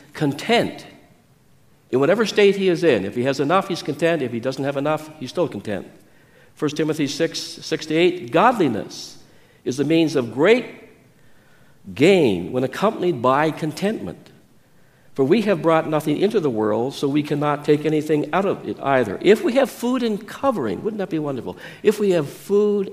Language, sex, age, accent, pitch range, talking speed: English, male, 60-79, American, 125-175 Hz, 180 wpm